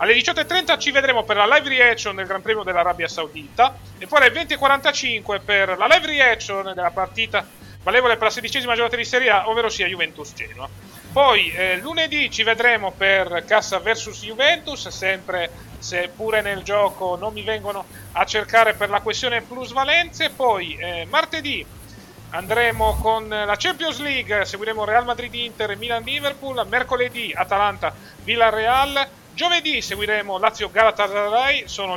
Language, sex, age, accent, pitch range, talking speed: Italian, male, 30-49, native, 175-245 Hz, 145 wpm